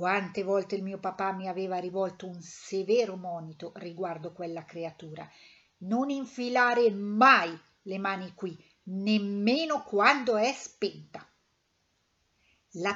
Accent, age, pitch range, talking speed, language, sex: native, 50-69, 175-230 Hz, 115 wpm, Italian, female